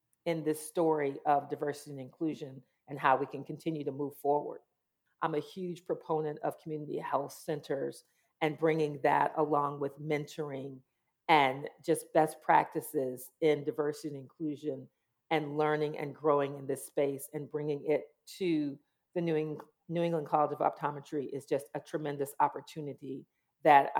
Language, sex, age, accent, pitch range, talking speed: English, female, 40-59, American, 140-160 Hz, 155 wpm